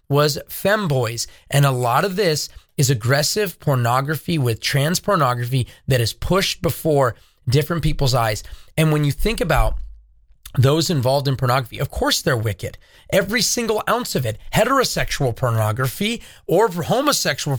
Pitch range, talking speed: 140-205 Hz, 145 wpm